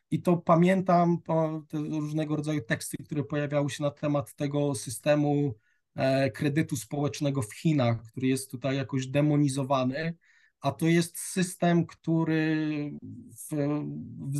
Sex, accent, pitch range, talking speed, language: male, native, 140-160 Hz, 125 wpm, Polish